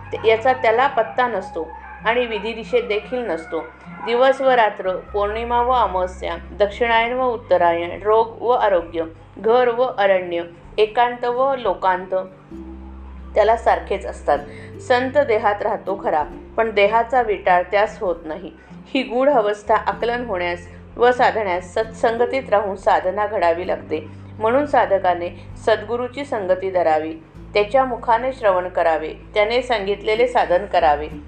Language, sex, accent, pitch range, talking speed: Marathi, female, native, 175-235 Hz, 125 wpm